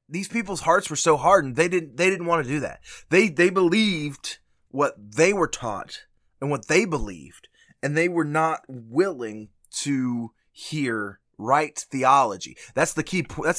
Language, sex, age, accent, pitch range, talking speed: English, male, 20-39, American, 125-165 Hz, 170 wpm